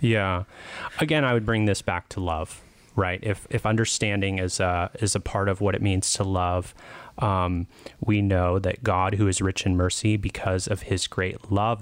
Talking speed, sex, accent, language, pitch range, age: 200 wpm, male, American, English, 90-110 Hz, 30-49